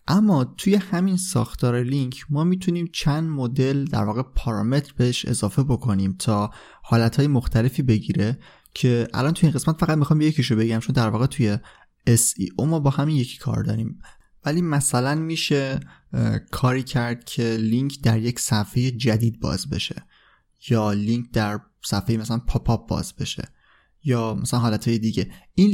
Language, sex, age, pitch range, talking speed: Persian, male, 20-39, 110-145 Hz, 155 wpm